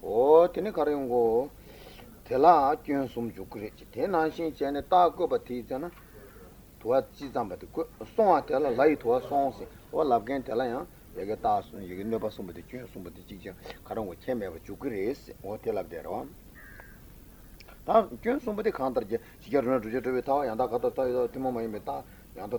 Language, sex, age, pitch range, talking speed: Italian, male, 40-59, 110-155 Hz, 125 wpm